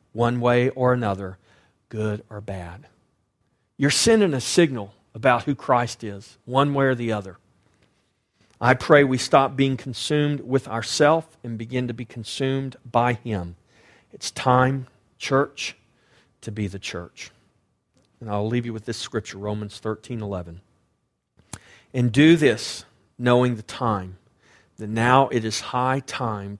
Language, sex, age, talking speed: English, male, 40-59, 145 wpm